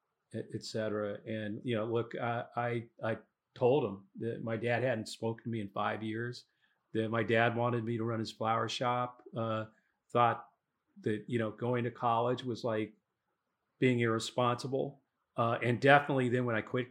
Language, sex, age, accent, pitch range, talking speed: English, male, 40-59, American, 110-130 Hz, 175 wpm